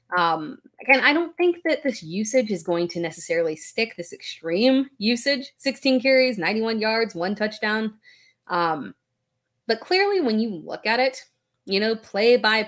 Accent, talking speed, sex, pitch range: American, 160 wpm, female, 170-245 Hz